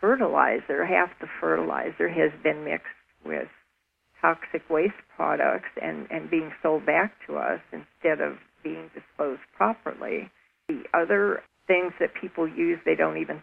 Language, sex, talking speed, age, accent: English, female, 145 wpm, 50-69, American